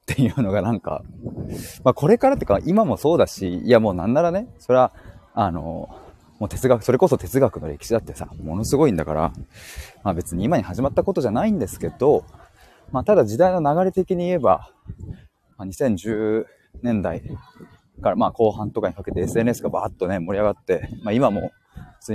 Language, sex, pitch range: Japanese, male, 100-160 Hz